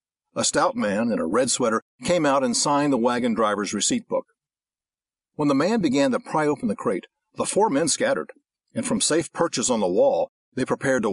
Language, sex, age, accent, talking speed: English, male, 50-69, American, 210 wpm